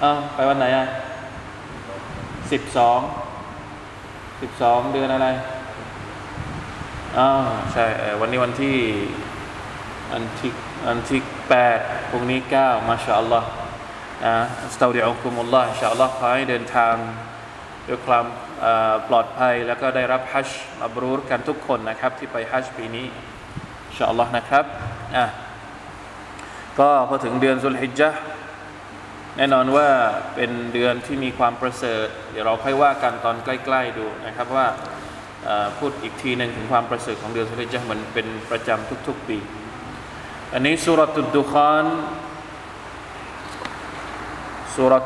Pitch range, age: 115-135 Hz, 20-39